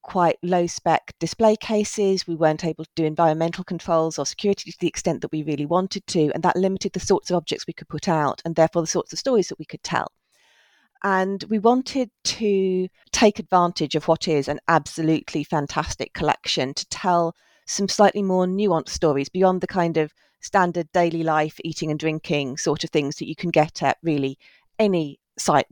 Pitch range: 160-200 Hz